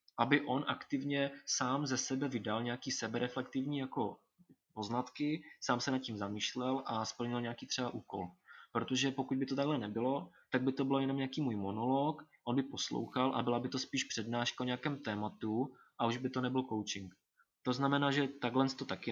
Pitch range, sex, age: 110-130 Hz, male, 20-39